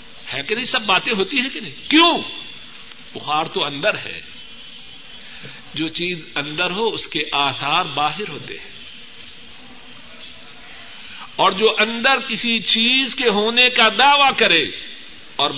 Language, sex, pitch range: Urdu, male, 155-210 Hz